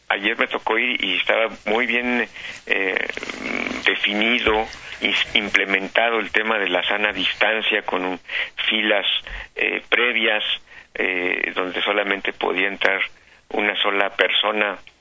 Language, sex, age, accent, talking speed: Spanish, male, 60-79, Mexican, 125 wpm